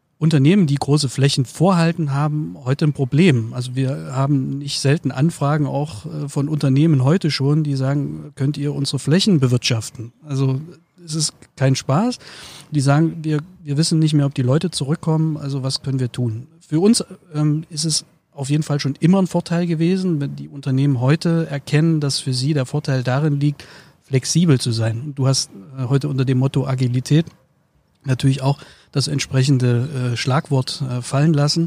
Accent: German